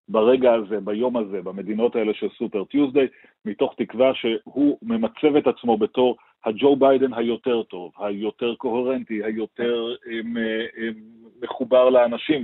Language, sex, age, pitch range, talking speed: Hebrew, male, 40-59, 110-140 Hz, 130 wpm